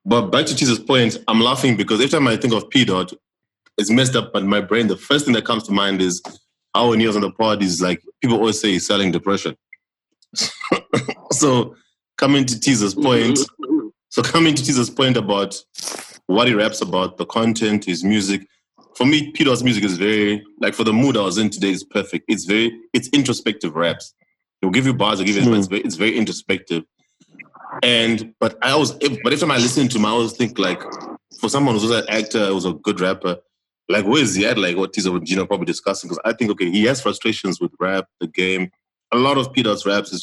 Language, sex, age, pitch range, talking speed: English, male, 20-39, 95-120 Hz, 225 wpm